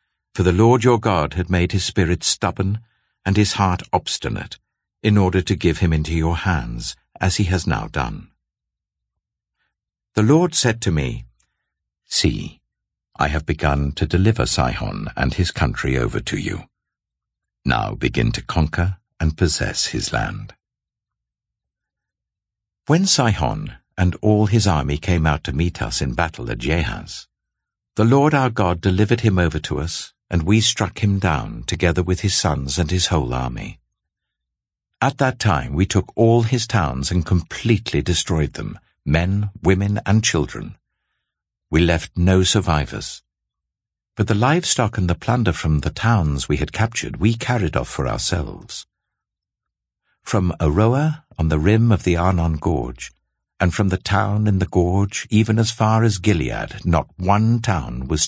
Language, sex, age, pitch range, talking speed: English, male, 60-79, 80-110 Hz, 155 wpm